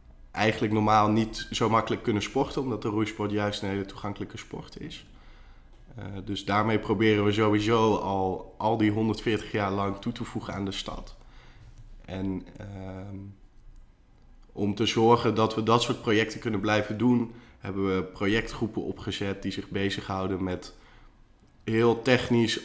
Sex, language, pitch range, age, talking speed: male, Dutch, 100-110 Hz, 20-39, 150 wpm